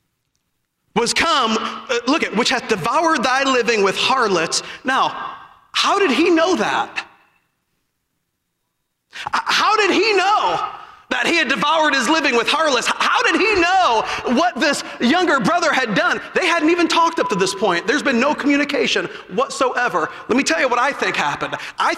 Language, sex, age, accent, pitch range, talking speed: English, male, 40-59, American, 235-335 Hz, 170 wpm